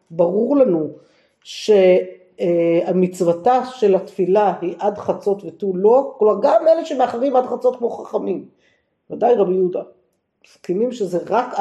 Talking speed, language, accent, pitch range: 125 wpm, Hebrew, native, 185-245 Hz